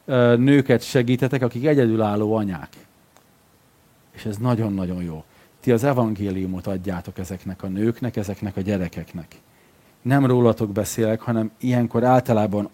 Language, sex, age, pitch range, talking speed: Hungarian, male, 40-59, 100-130 Hz, 120 wpm